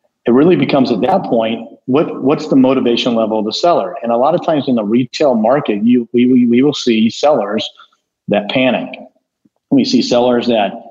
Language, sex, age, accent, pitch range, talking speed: English, male, 40-59, American, 115-175 Hz, 195 wpm